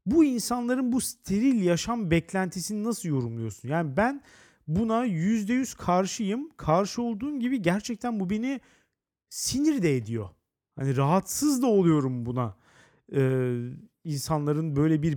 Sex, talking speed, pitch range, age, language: male, 125 wpm, 130-210 Hz, 40-59, Turkish